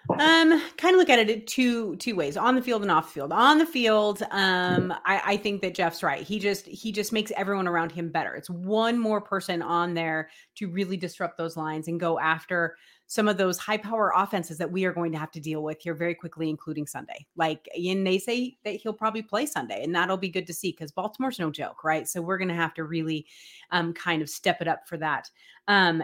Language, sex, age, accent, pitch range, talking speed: English, female, 30-49, American, 170-220 Hz, 240 wpm